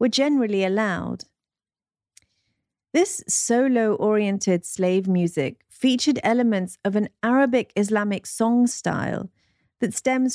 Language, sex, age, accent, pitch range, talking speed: English, female, 40-59, British, 175-235 Hz, 95 wpm